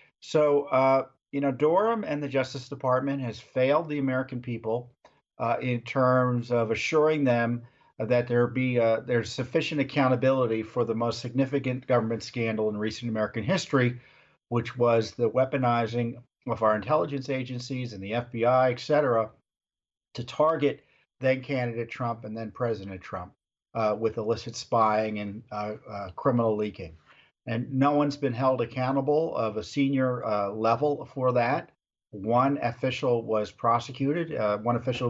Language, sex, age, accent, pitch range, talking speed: English, male, 50-69, American, 110-135 Hz, 150 wpm